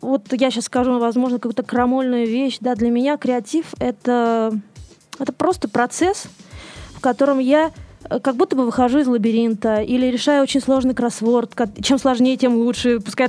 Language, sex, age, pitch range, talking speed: Russian, female, 20-39, 235-275 Hz, 165 wpm